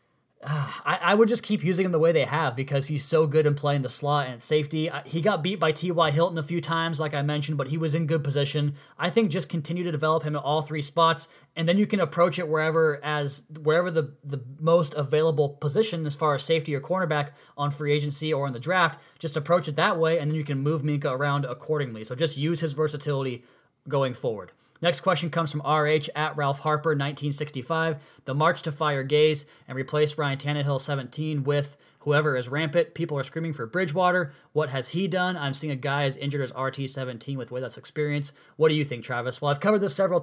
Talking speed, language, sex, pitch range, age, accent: 225 wpm, English, male, 145-165 Hz, 20-39, American